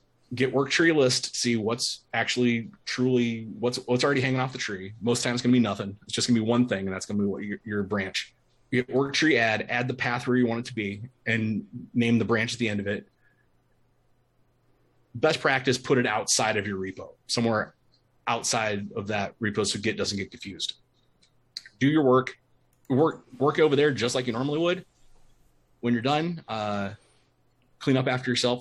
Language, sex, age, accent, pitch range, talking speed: English, male, 30-49, American, 110-130 Hz, 200 wpm